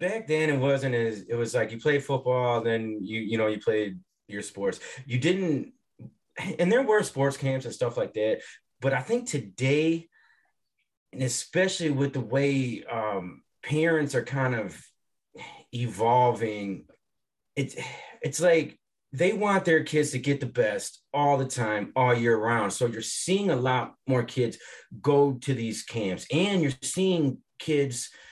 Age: 30-49